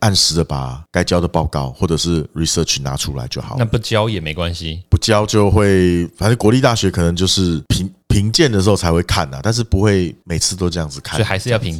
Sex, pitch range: male, 85-110 Hz